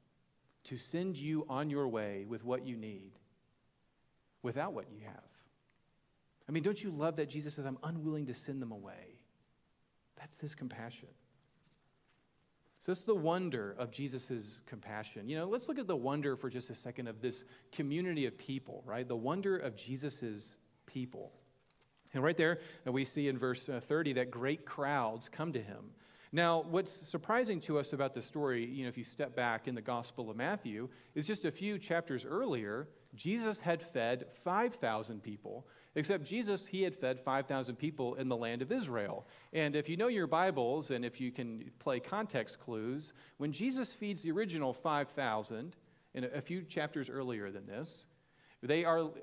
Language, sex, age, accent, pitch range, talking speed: English, male, 40-59, American, 125-165 Hz, 180 wpm